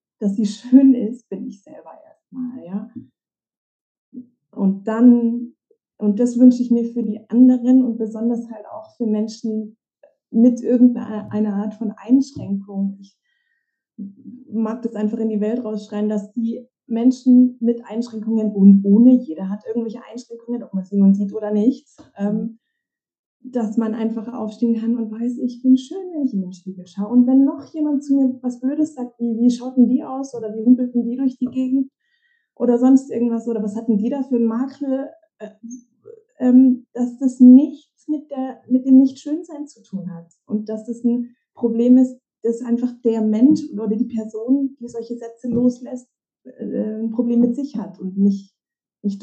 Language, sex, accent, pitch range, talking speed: German, female, German, 220-260 Hz, 175 wpm